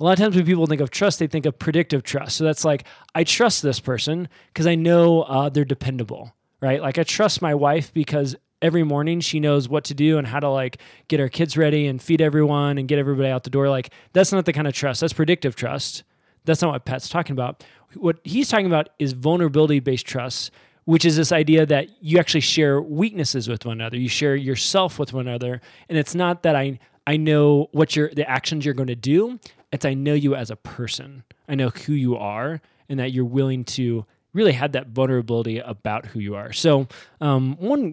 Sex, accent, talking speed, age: male, American, 225 wpm, 20-39